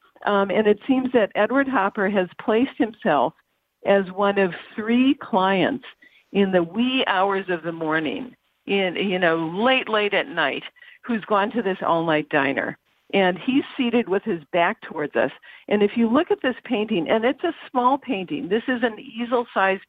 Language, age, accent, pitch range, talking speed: English, 50-69, American, 185-235 Hz, 180 wpm